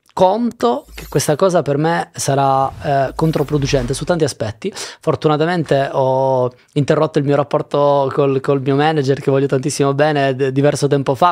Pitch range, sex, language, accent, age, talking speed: 140-180 Hz, male, Italian, native, 20-39, 155 wpm